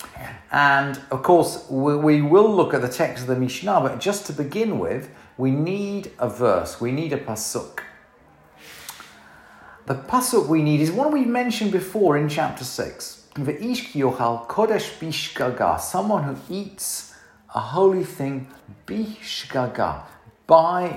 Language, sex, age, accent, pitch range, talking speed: English, male, 40-59, British, 125-180 Hz, 130 wpm